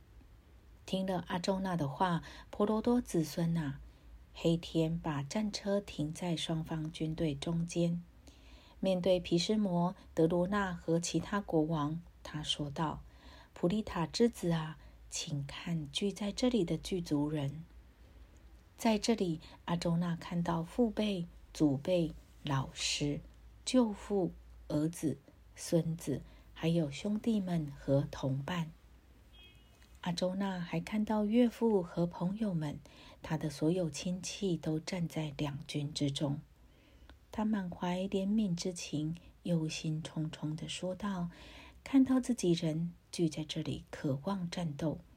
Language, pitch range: Chinese, 150-185 Hz